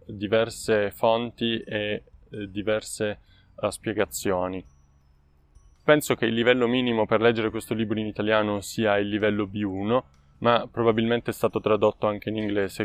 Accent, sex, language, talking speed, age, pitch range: native, male, Italian, 130 wpm, 20-39, 100-115 Hz